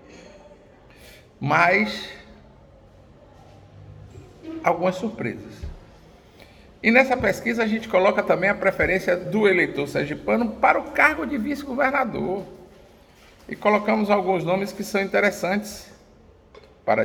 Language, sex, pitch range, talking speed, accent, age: Portuguese, male, 135-210 Hz, 100 wpm, Brazilian, 50-69